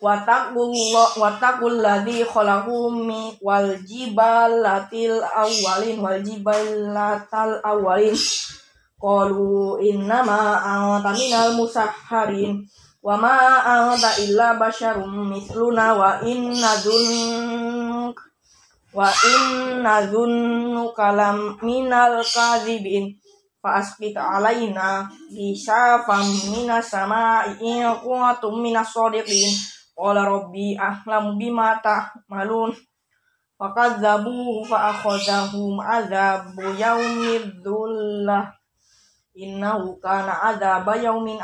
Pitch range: 200-230 Hz